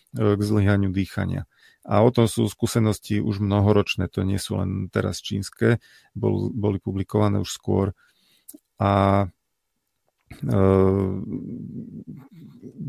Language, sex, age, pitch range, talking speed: Slovak, male, 40-59, 100-110 Hz, 105 wpm